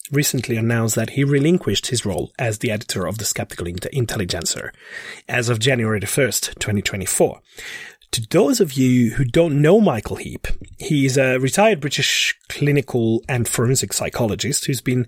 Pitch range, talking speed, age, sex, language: 120-155 Hz, 150 wpm, 30-49, male, English